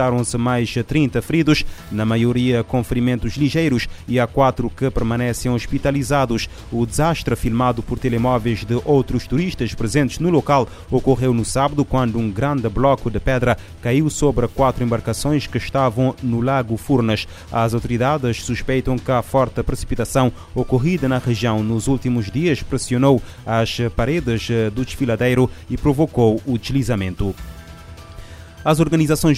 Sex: male